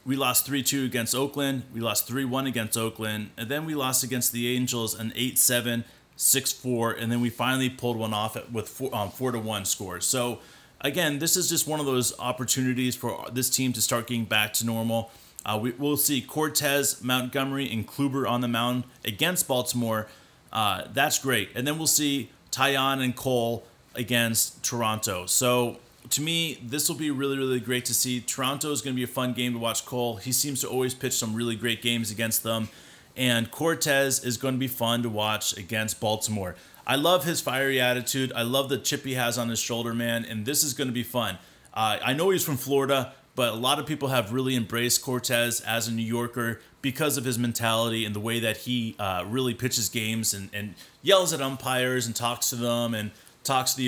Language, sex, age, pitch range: English, male, 30-49, 115-135 Hz